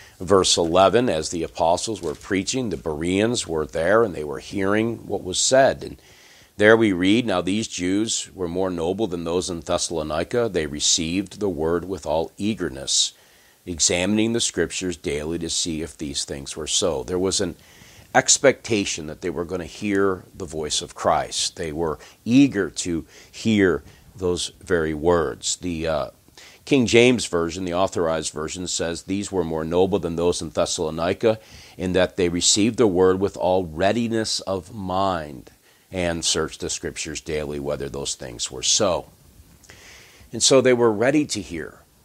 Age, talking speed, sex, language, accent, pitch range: 50-69, 165 wpm, male, English, American, 85-105 Hz